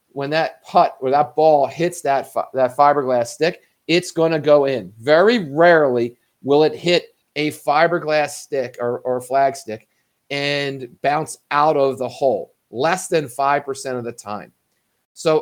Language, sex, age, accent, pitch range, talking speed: English, male, 40-59, American, 120-155 Hz, 160 wpm